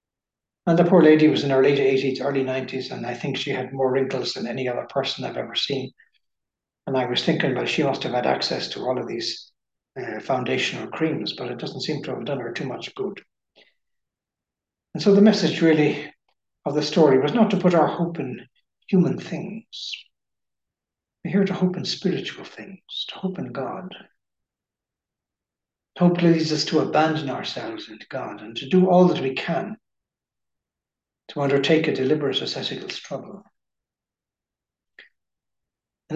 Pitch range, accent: 140-190 Hz, Irish